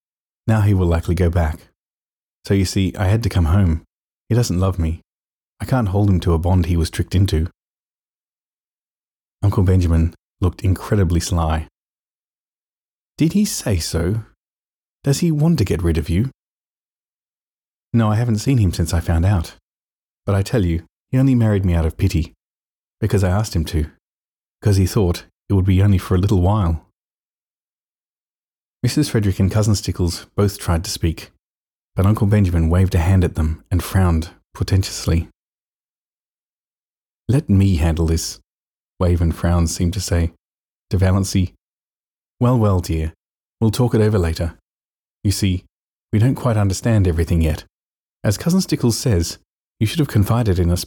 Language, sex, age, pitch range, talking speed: English, male, 30-49, 85-105 Hz, 165 wpm